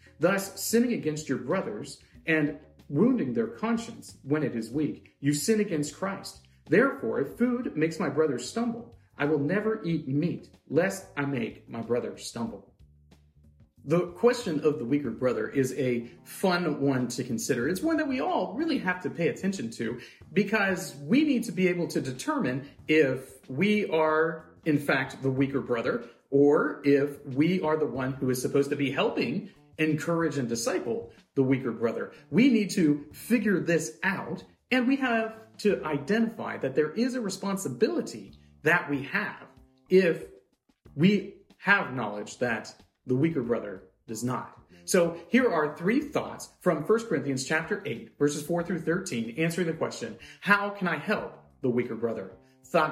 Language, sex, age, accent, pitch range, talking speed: English, male, 40-59, American, 135-195 Hz, 165 wpm